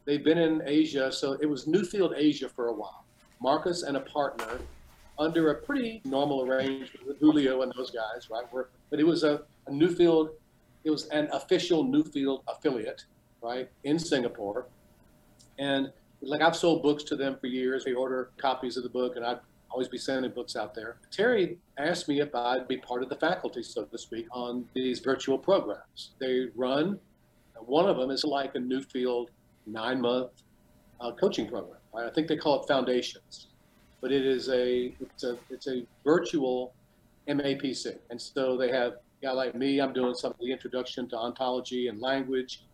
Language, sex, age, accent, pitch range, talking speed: English, male, 50-69, American, 125-145 Hz, 185 wpm